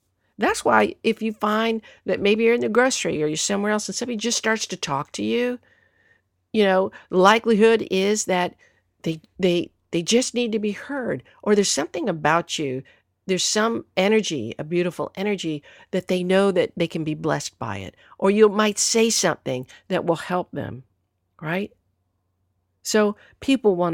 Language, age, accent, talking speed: English, 50-69, American, 180 wpm